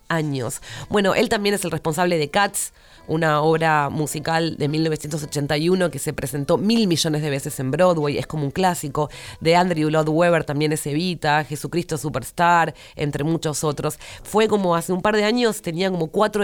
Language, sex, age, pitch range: Spanish, female, 30-49, 150-185 Hz